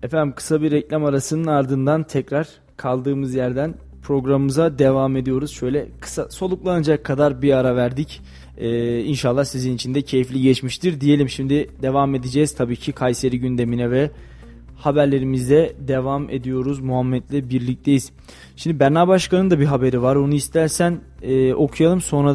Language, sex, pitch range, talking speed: Turkish, male, 135-170 Hz, 140 wpm